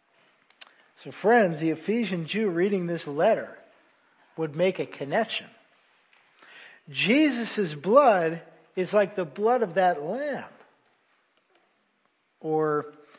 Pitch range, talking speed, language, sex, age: 155-230 Hz, 100 wpm, English, male, 50-69